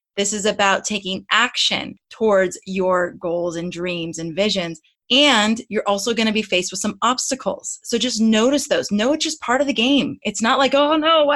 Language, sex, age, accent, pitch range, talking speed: English, female, 20-39, American, 190-245 Hz, 205 wpm